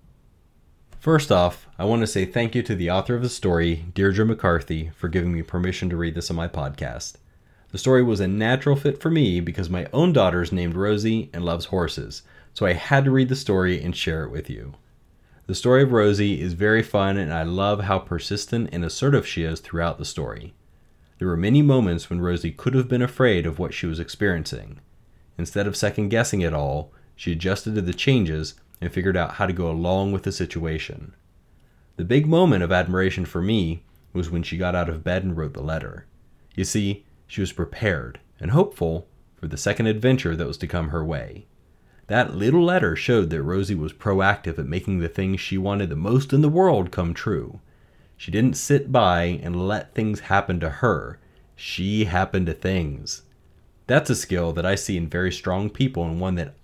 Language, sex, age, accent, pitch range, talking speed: English, male, 30-49, American, 85-105 Hz, 205 wpm